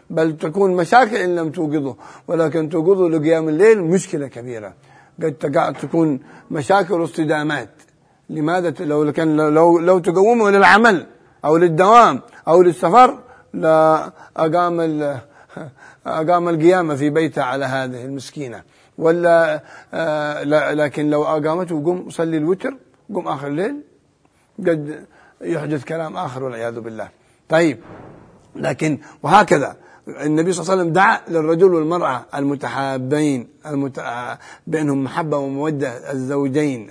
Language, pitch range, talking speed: Arabic, 145-165 Hz, 110 wpm